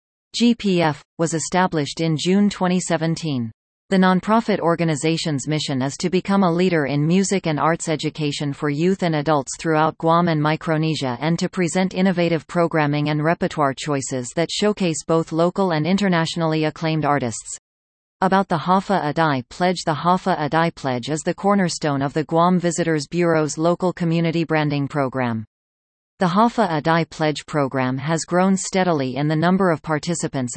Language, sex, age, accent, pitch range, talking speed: English, female, 40-59, American, 150-180 Hz, 155 wpm